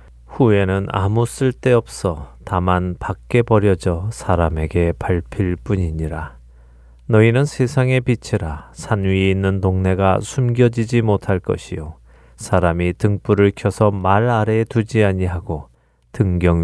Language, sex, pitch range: Korean, male, 75-110 Hz